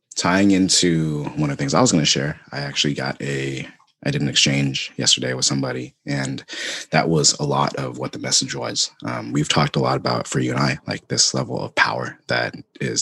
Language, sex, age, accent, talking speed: English, male, 30-49, American, 225 wpm